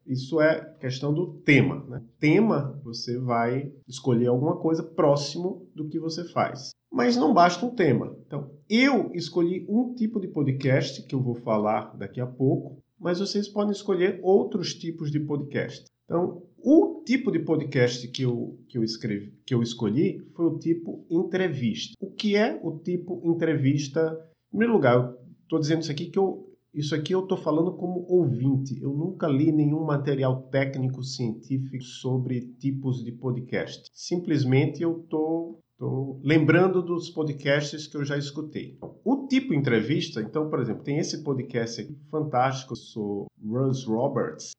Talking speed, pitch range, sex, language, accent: 155 wpm, 130-170 Hz, male, English, Brazilian